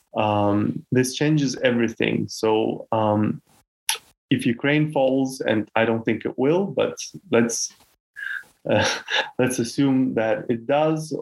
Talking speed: 125 wpm